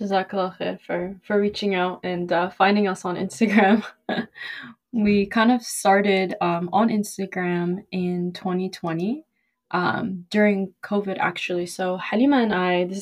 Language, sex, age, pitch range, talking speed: English, female, 20-39, 180-205 Hz, 135 wpm